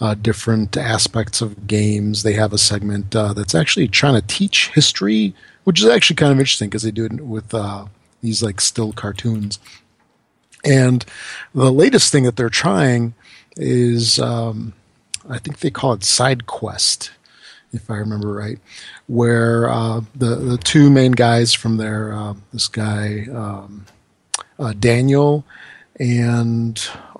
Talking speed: 150 wpm